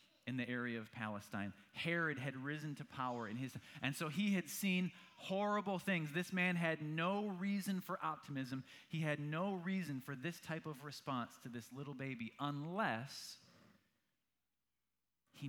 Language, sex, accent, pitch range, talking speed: English, male, American, 105-150 Hz, 160 wpm